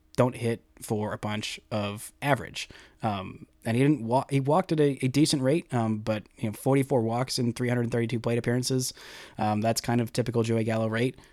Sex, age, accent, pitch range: male, 30-49, American, 110-130 Hz